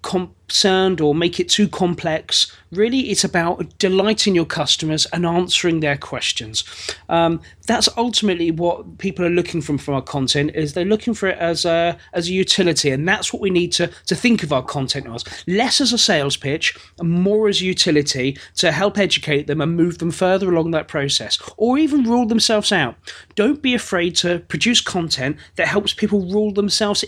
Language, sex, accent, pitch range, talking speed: English, male, British, 150-200 Hz, 185 wpm